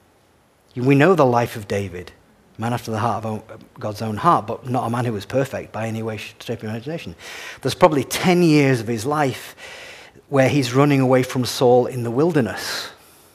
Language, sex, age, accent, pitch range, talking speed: English, male, 40-59, British, 115-155 Hz, 200 wpm